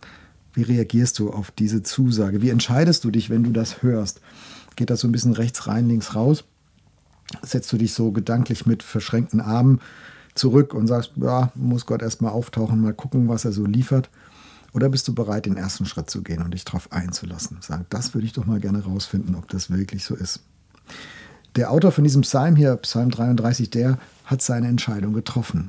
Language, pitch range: German, 100-125 Hz